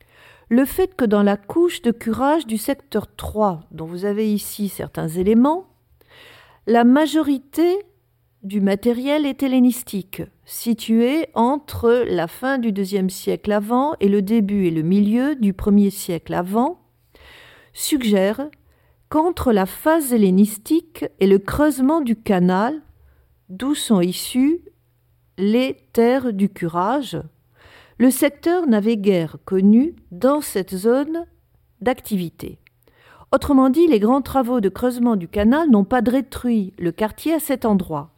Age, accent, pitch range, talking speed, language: 50-69, French, 195-275 Hz, 130 wpm, French